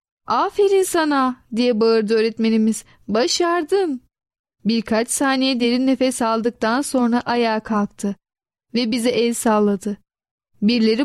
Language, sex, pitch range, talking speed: Turkish, female, 220-285 Hz, 105 wpm